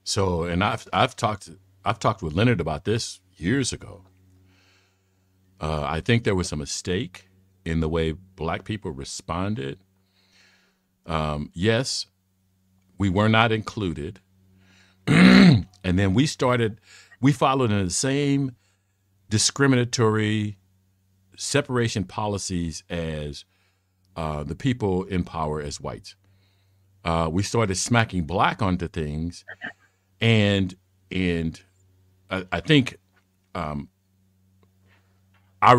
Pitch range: 90-105 Hz